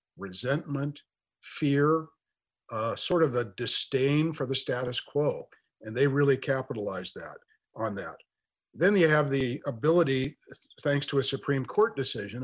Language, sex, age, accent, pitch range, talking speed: English, male, 50-69, American, 120-150 Hz, 140 wpm